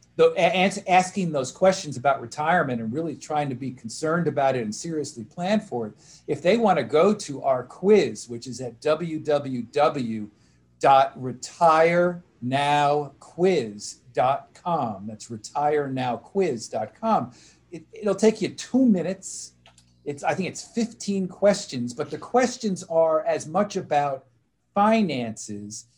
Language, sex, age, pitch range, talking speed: English, male, 50-69, 125-175 Hz, 120 wpm